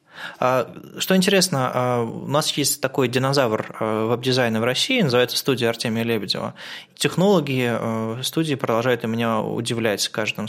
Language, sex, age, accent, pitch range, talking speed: Russian, male, 20-39, native, 110-145 Hz, 125 wpm